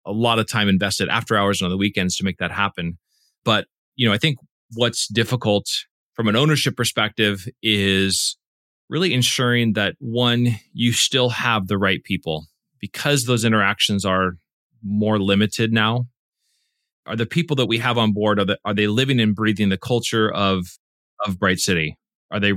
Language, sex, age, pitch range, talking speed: English, male, 30-49, 100-125 Hz, 180 wpm